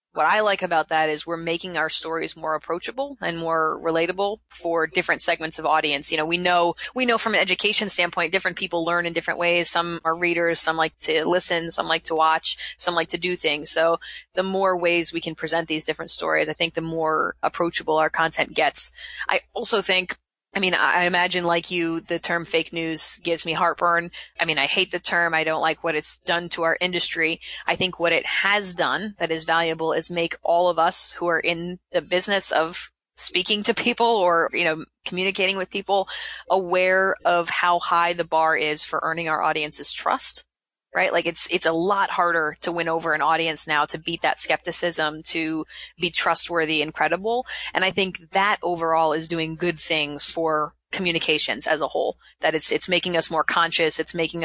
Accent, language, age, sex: American, English, 20-39, female